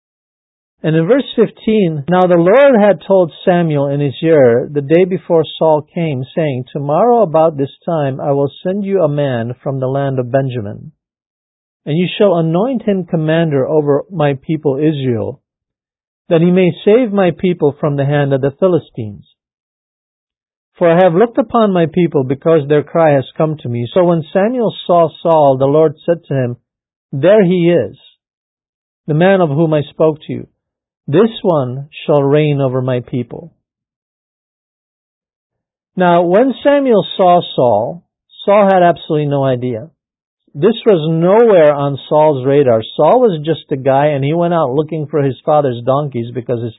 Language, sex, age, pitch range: English, male, 50-69, 135-175 Hz